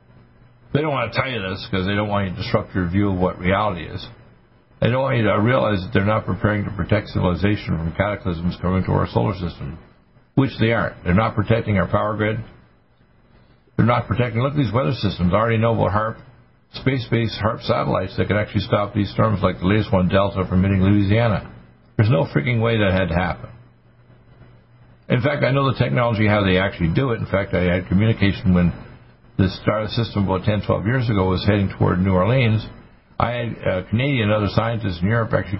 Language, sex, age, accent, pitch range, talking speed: English, male, 60-79, American, 95-115 Hz, 215 wpm